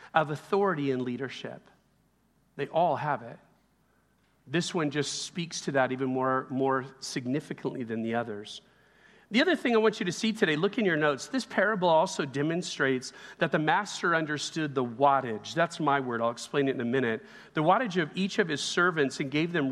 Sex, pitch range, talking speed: male, 145-210 Hz, 190 wpm